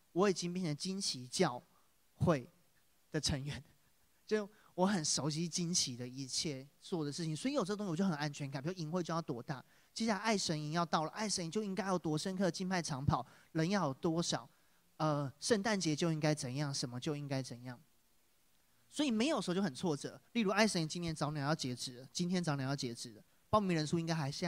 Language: Chinese